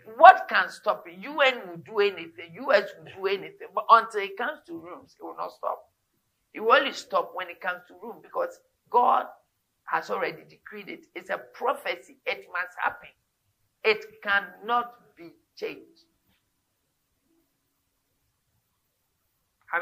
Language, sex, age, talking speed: English, male, 50-69, 145 wpm